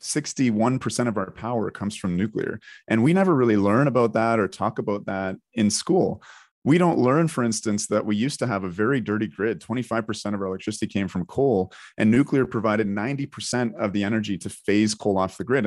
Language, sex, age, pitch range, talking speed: English, male, 30-49, 100-125 Hz, 220 wpm